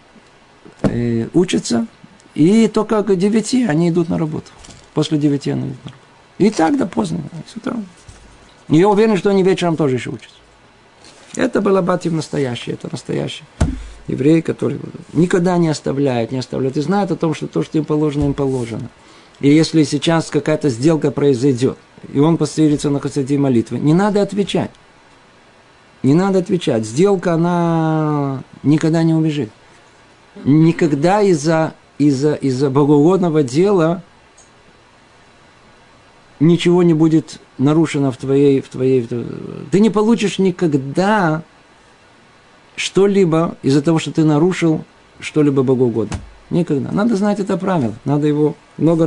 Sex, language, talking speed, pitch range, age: male, Russian, 135 wpm, 140-175 Hz, 50-69